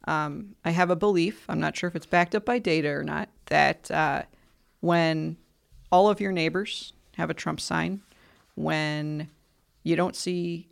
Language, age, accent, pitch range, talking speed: English, 40-59, American, 155-180 Hz, 175 wpm